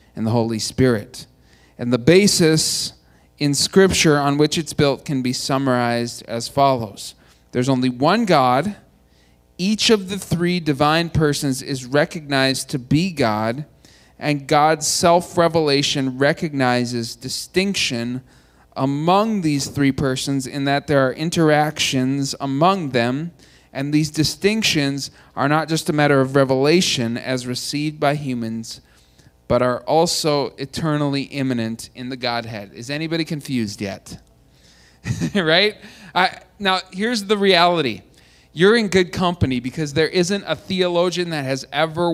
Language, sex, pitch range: English, male, 125-170 Hz